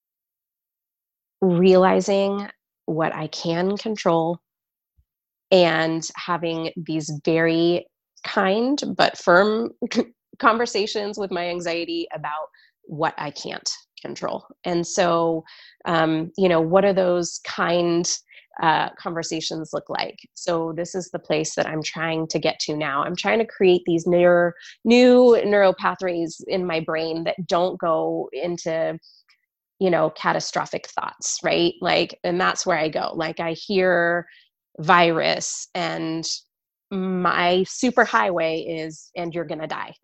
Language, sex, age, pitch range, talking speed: English, female, 20-39, 165-195 Hz, 130 wpm